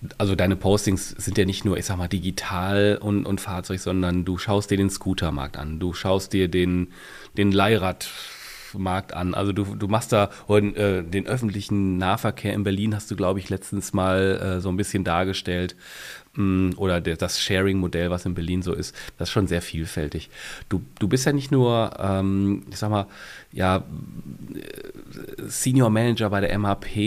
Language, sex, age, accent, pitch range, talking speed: German, male, 30-49, German, 90-105 Hz, 175 wpm